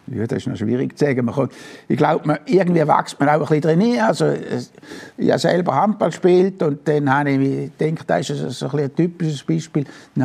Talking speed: 225 wpm